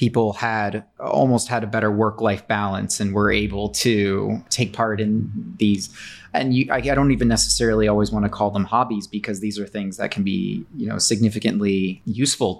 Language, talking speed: English, 185 wpm